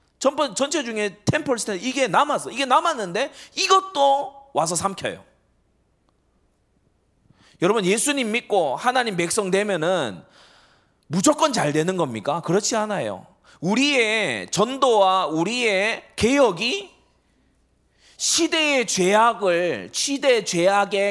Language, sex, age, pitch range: Korean, male, 30-49, 195-275 Hz